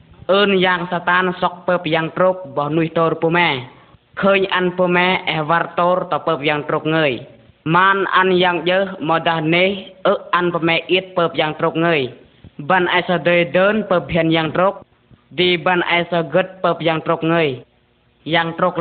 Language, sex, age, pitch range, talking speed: Vietnamese, female, 20-39, 155-180 Hz, 130 wpm